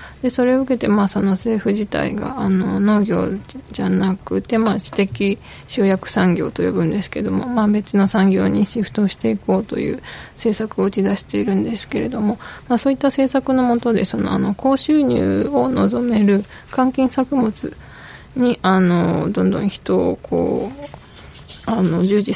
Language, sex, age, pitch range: Japanese, female, 20-39, 190-235 Hz